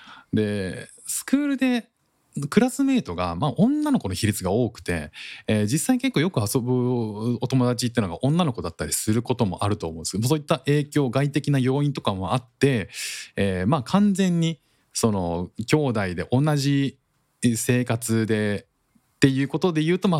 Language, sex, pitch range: Japanese, male, 105-165 Hz